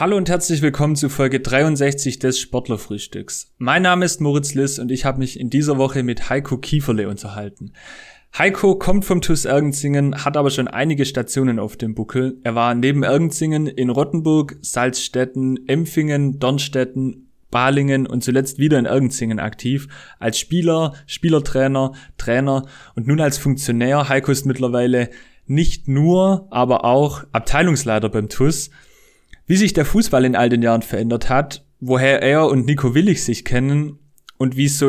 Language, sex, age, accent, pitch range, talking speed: German, male, 30-49, German, 125-145 Hz, 160 wpm